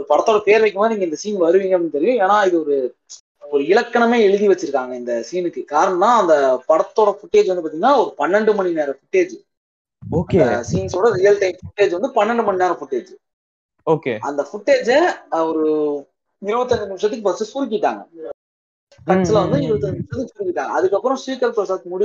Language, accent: Tamil, native